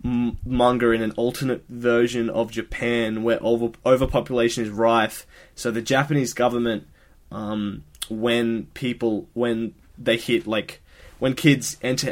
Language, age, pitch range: English, 20-39, 110-125 Hz